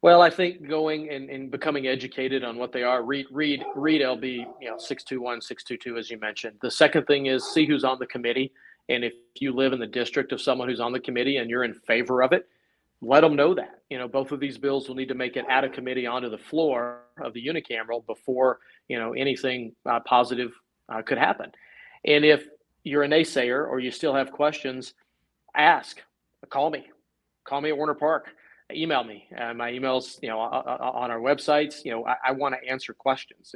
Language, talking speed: English, 220 wpm